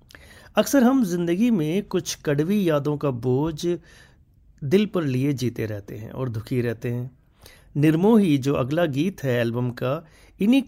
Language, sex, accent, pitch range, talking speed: Hindi, male, native, 120-185 Hz, 150 wpm